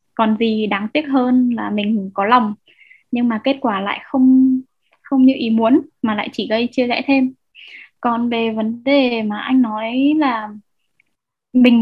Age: 10-29